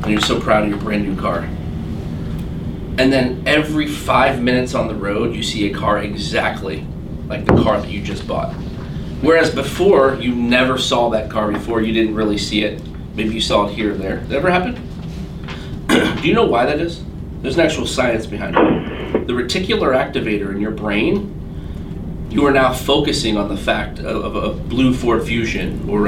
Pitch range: 80-130 Hz